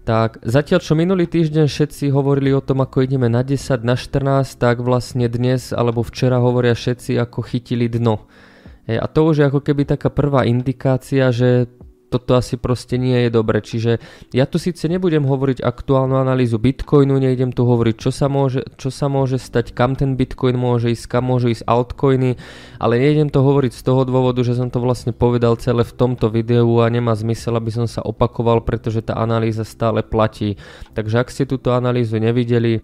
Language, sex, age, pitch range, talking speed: Croatian, male, 20-39, 115-130 Hz, 190 wpm